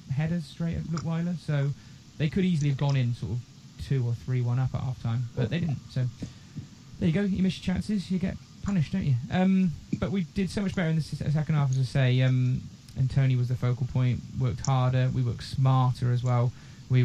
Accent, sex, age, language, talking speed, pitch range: British, male, 20-39, English, 230 wpm, 125-155 Hz